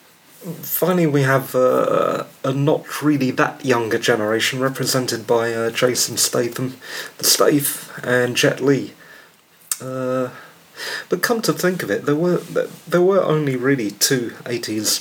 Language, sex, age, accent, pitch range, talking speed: English, male, 30-49, British, 115-145 Hz, 140 wpm